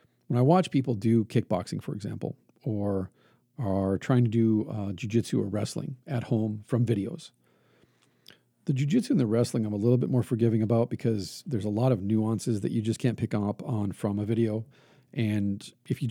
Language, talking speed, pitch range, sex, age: English, 195 wpm, 110-125 Hz, male, 40-59